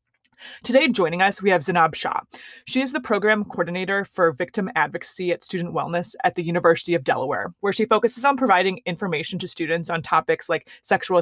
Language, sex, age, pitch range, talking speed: English, female, 20-39, 170-215 Hz, 185 wpm